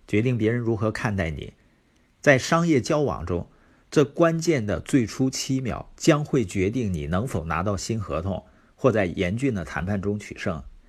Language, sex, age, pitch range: Chinese, male, 50-69, 95-135 Hz